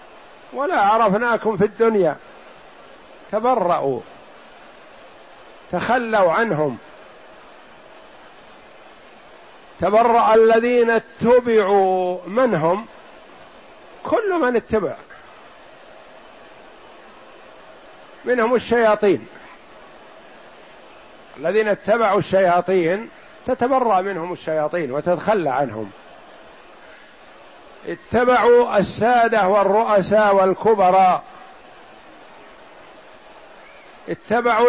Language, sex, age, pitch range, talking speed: Arabic, male, 50-69, 190-235 Hz, 50 wpm